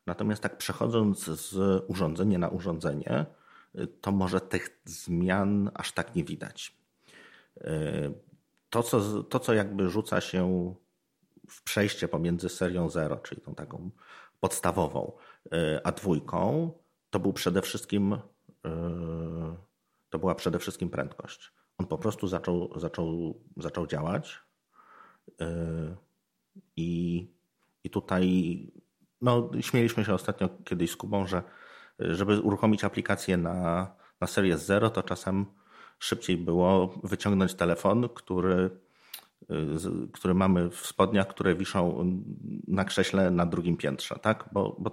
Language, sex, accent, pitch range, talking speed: Polish, male, native, 85-100 Hz, 120 wpm